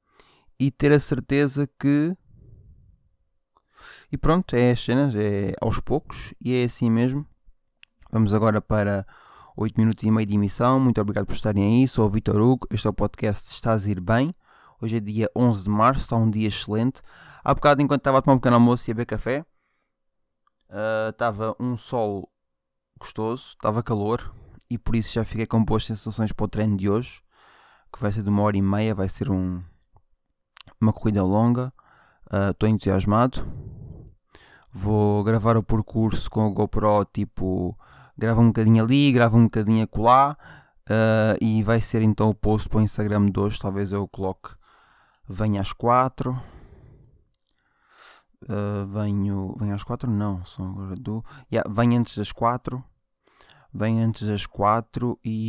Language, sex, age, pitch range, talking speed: Portuguese, male, 20-39, 105-120 Hz, 170 wpm